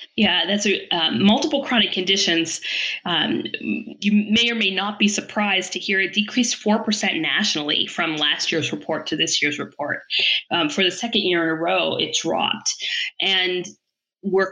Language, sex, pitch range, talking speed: English, female, 160-195 Hz, 175 wpm